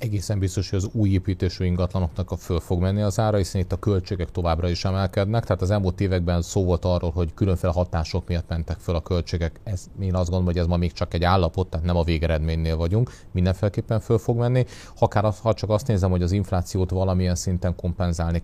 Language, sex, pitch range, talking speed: Hungarian, male, 85-100 Hz, 215 wpm